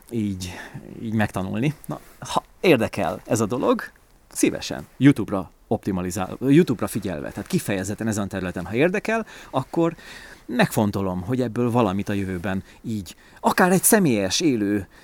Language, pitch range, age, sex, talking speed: Hungarian, 100-145 Hz, 30-49, male, 130 wpm